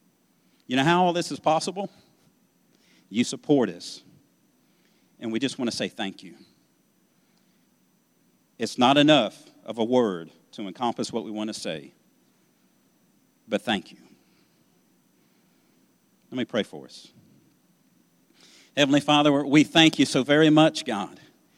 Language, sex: English, male